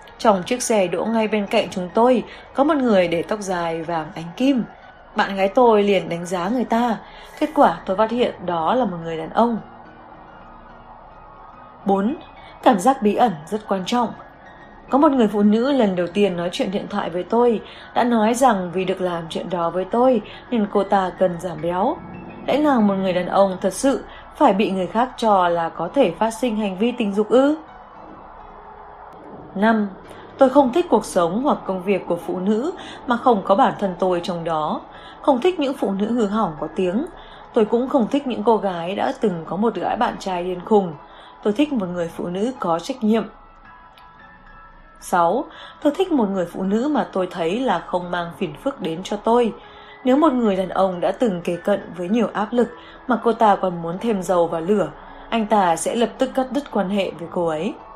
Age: 20-39